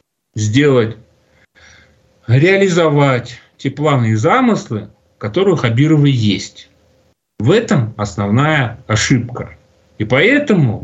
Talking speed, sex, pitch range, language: 90 wpm, male, 110-160 Hz, Russian